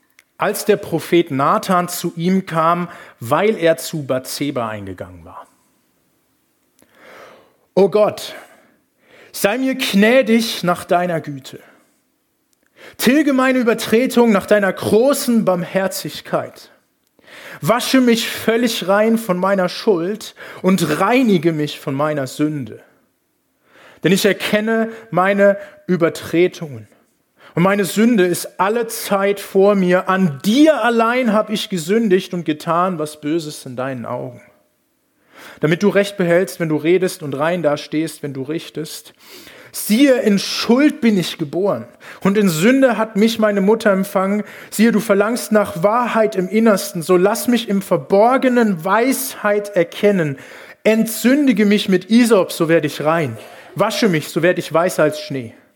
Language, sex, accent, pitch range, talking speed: German, male, German, 165-220 Hz, 135 wpm